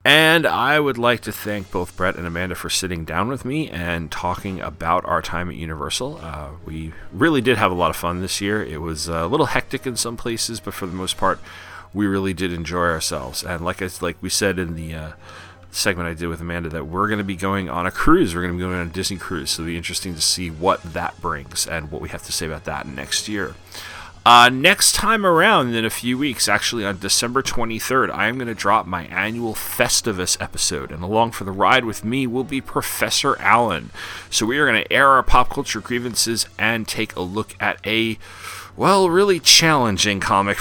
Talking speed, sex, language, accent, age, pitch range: 230 wpm, male, English, American, 30-49, 85-115 Hz